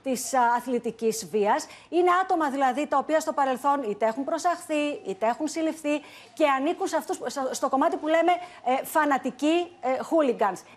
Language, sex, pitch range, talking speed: Greek, female, 230-300 Hz, 150 wpm